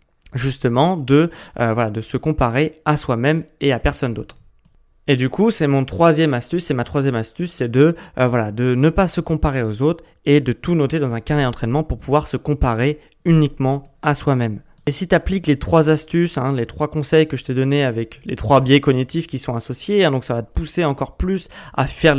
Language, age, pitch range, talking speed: French, 20-39, 125-155 Hz, 215 wpm